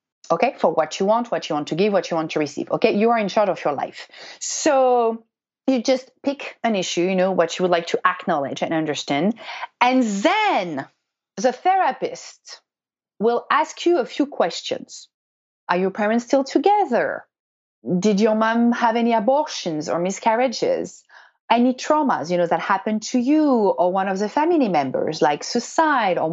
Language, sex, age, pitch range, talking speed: English, female, 30-49, 180-260 Hz, 180 wpm